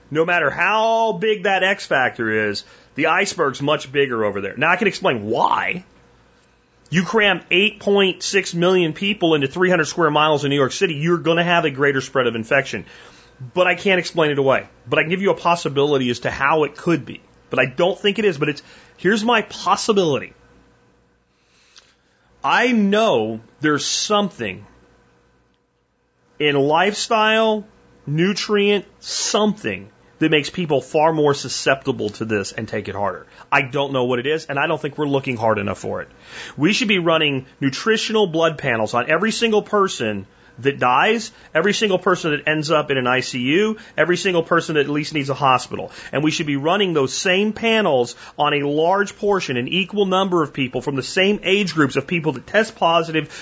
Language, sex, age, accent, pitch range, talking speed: English, male, 30-49, American, 130-190 Hz, 185 wpm